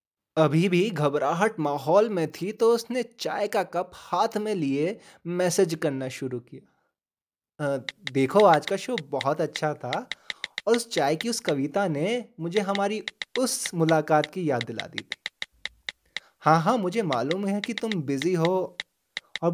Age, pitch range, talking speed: 20-39, 155-215 Hz, 160 wpm